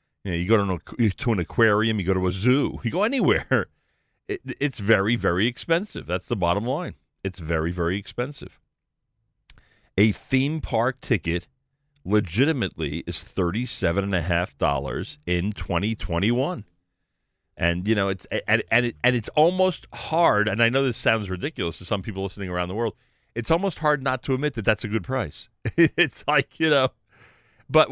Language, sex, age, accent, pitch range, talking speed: English, male, 50-69, American, 90-130 Hz, 170 wpm